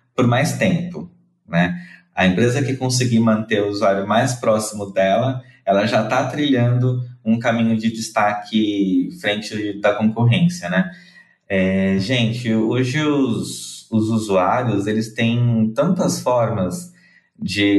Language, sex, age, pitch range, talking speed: Portuguese, male, 20-39, 105-135 Hz, 120 wpm